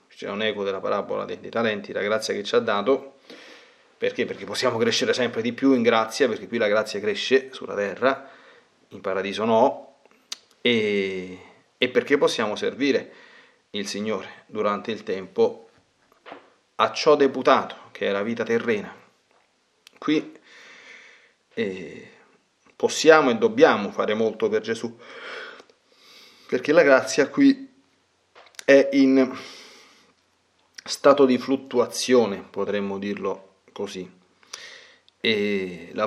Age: 30-49